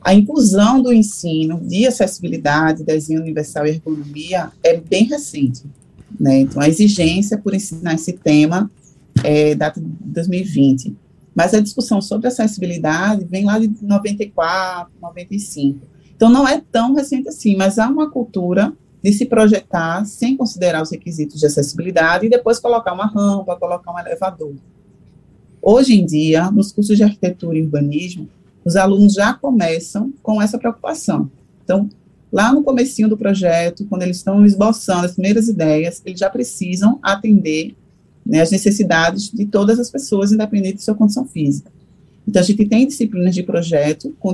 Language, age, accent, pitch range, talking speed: Portuguese, 30-49, Brazilian, 165-215 Hz, 155 wpm